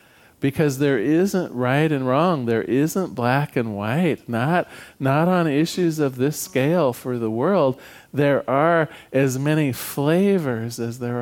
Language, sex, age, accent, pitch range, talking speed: English, male, 40-59, American, 125-170 Hz, 150 wpm